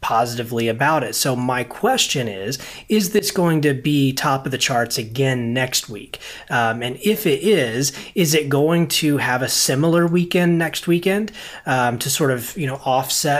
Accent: American